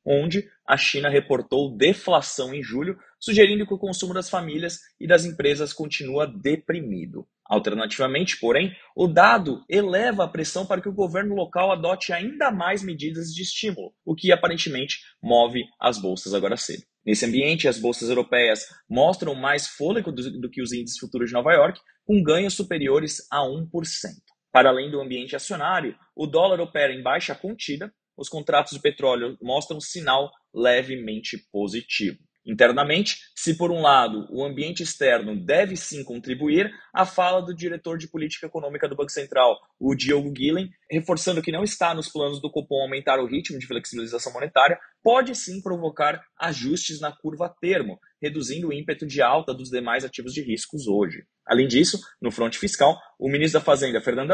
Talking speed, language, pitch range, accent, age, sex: 165 wpm, Portuguese, 130-180 Hz, Brazilian, 20-39, male